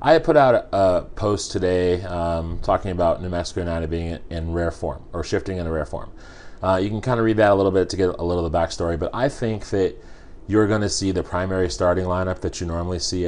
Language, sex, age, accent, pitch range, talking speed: English, male, 30-49, American, 85-95 Hz, 260 wpm